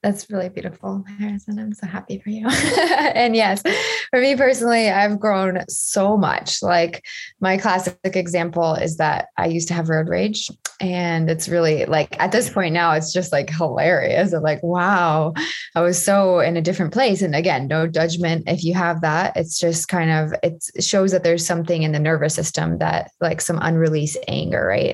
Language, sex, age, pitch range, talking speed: English, female, 20-39, 160-195 Hz, 190 wpm